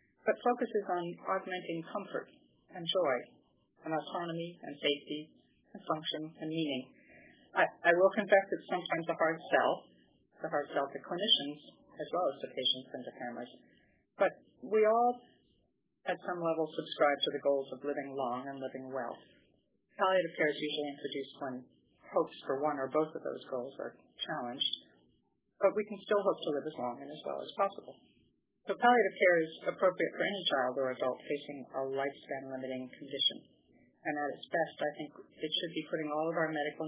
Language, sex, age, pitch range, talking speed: English, female, 30-49, 140-180 Hz, 180 wpm